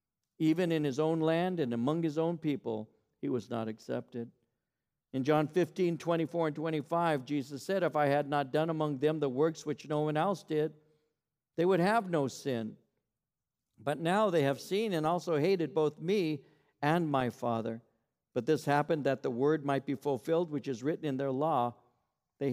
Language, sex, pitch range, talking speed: English, male, 140-185 Hz, 185 wpm